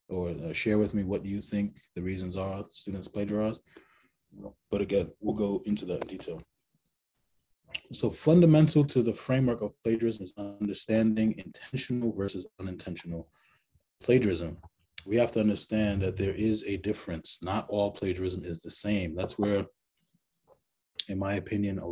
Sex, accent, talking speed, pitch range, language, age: male, American, 150 wpm, 95-120 Hz, English, 20-39